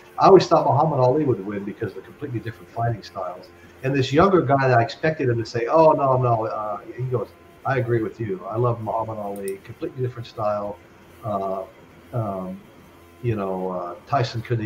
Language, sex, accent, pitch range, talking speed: English, male, American, 95-120 Hz, 195 wpm